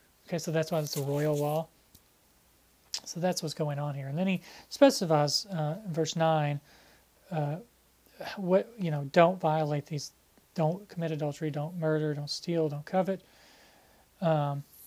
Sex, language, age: male, English, 30-49